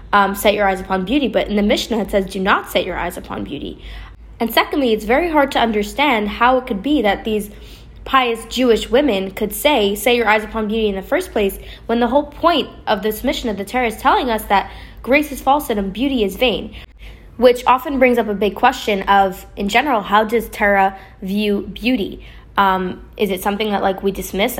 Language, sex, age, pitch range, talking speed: English, female, 10-29, 195-235 Hz, 215 wpm